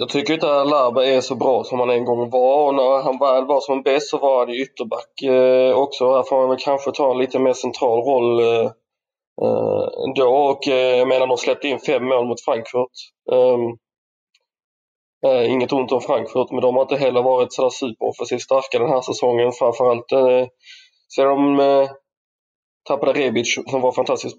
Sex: male